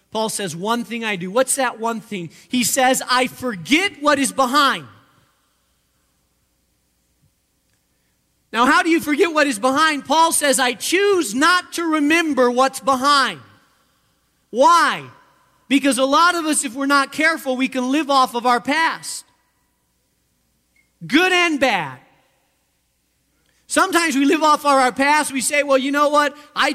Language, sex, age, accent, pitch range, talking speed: English, male, 40-59, American, 235-300 Hz, 155 wpm